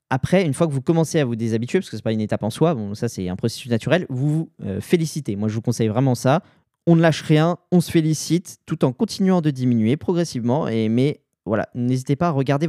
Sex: male